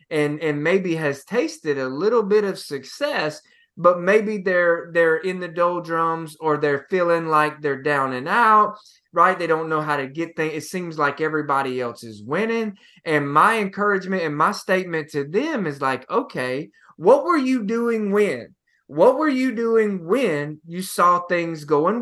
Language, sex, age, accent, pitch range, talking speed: English, male, 20-39, American, 155-215 Hz, 175 wpm